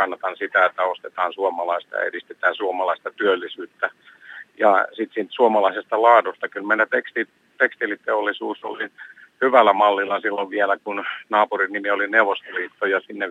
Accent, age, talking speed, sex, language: native, 50-69, 130 wpm, male, Finnish